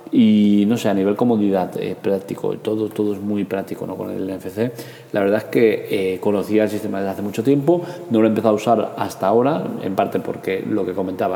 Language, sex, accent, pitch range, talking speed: Spanish, male, Spanish, 95-115 Hz, 225 wpm